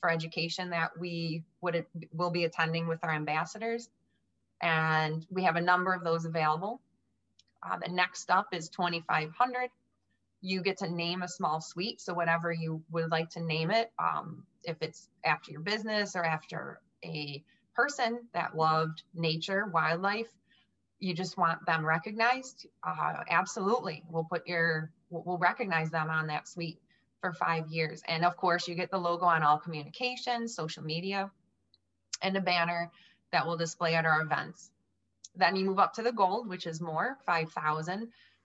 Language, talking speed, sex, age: English, 165 wpm, female, 20-39